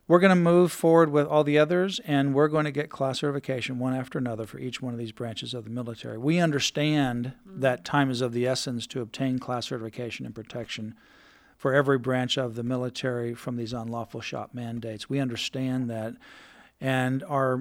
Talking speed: 200 wpm